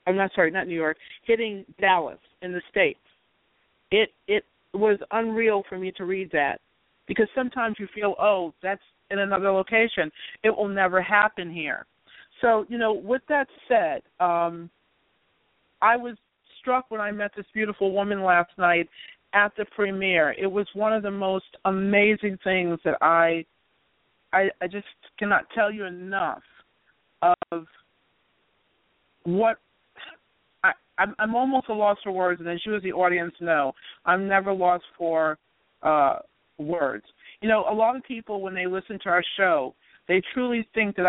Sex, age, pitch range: female, 50-69, 180-215 Hz